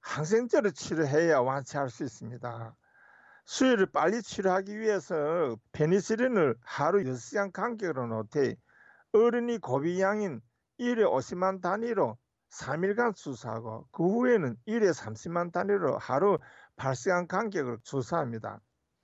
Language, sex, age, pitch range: Korean, male, 50-69, 125-205 Hz